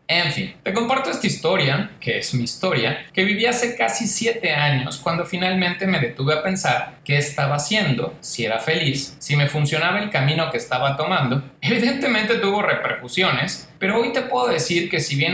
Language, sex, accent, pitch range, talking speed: Spanish, male, Mexican, 140-195 Hz, 185 wpm